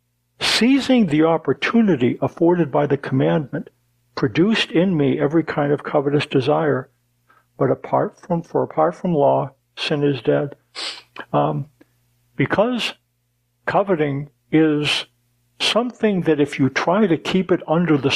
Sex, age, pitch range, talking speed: male, 60-79, 130-170 Hz, 130 wpm